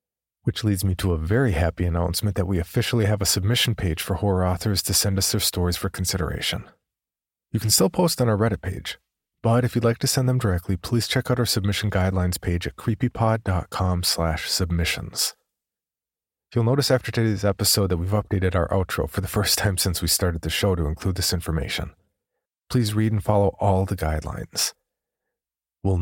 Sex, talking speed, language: male, 190 wpm, English